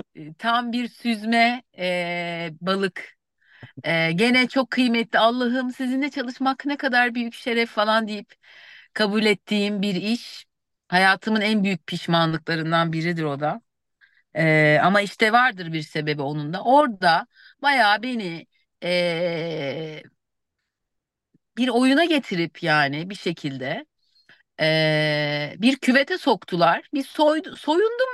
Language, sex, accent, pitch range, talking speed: Turkish, female, native, 175-265 Hz, 100 wpm